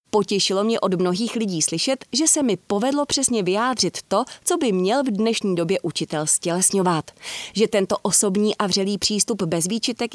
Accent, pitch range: native, 185-240 Hz